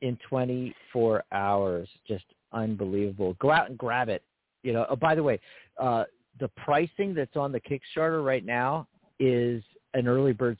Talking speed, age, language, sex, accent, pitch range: 160 wpm, 50-69, English, male, American, 110-140 Hz